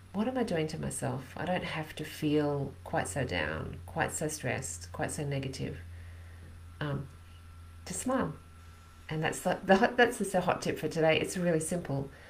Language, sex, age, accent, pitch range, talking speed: English, female, 40-59, Australian, 135-180 Hz, 175 wpm